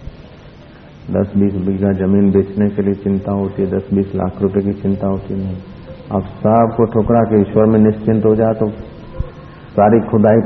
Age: 50-69